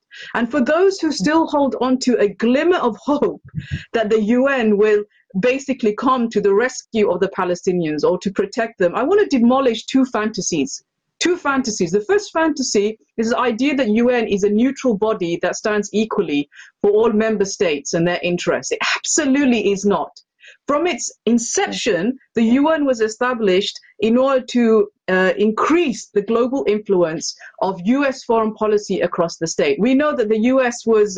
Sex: female